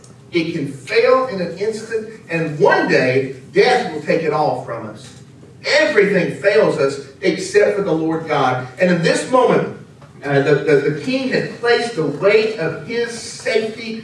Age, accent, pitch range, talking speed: 50-69, American, 135-200 Hz, 170 wpm